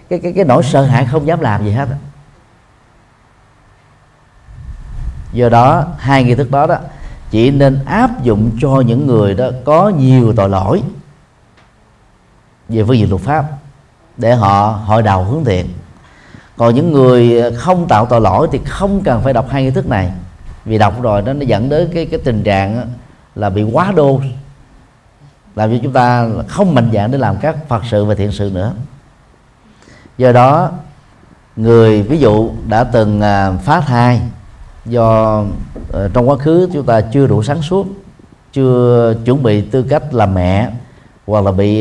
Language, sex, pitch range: Vietnamese, male, 105-140 Hz